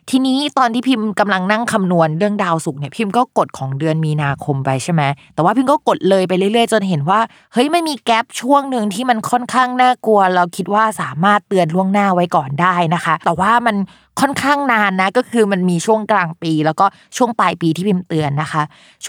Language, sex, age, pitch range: Thai, female, 20-39, 175-220 Hz